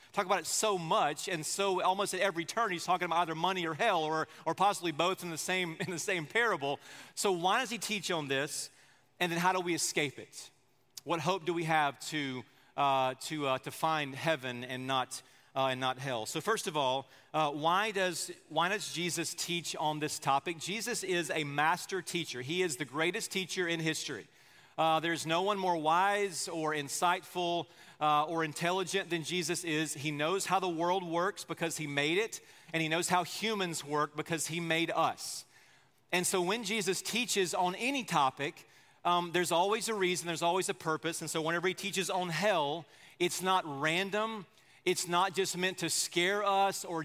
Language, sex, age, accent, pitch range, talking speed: English, male, 40-59, American, 155-185 Hz, 200 wpm